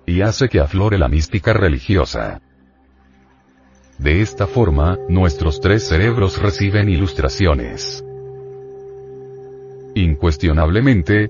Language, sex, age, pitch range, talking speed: Spanish, male, 40-59, 80-110 Hz, 85 wpm